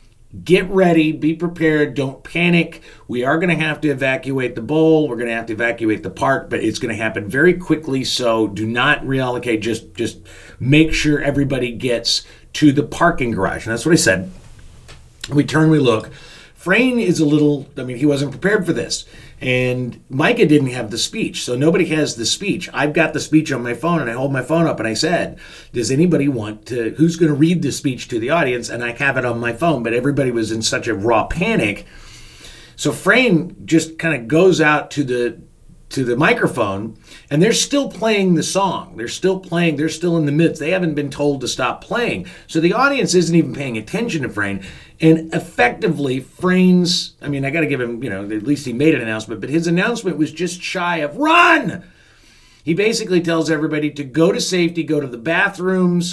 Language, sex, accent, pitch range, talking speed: English, male, American, 120-165 Hz, 210 wpm